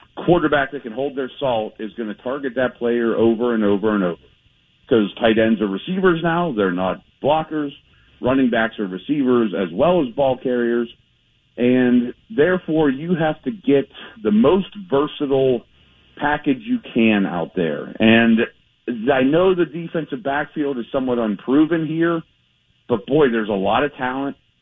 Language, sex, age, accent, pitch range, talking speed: English, male, 50-69, American, 115-140 Hz, 160 wpm